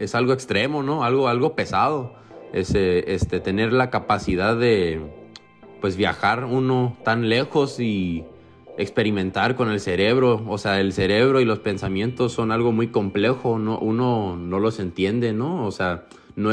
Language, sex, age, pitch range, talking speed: English, male, 20-39, 105-130 Hz, 155 wpm